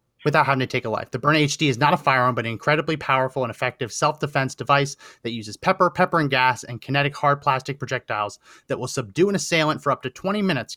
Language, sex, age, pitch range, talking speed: English, male, 30-49, 125-150 Hz, 235 wpm